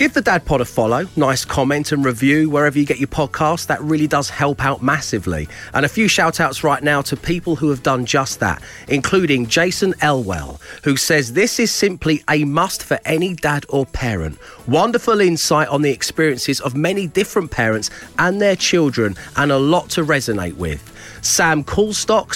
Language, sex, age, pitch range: English, male, 40-59, 135-180 Hz